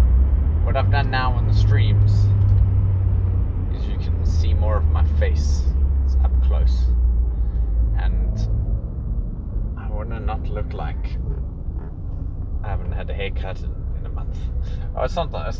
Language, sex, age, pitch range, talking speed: English, male, 20-39, 70-90 Hz, 145 wpm